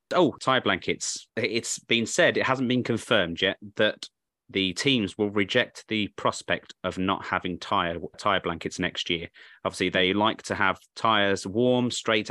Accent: British